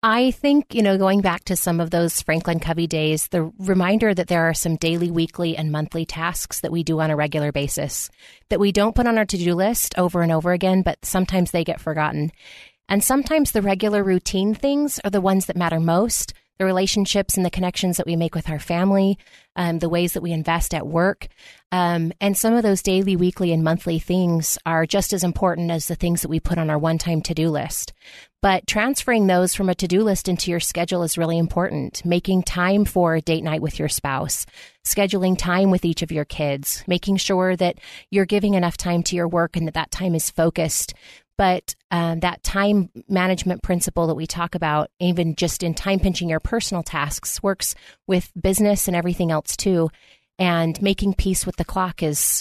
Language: English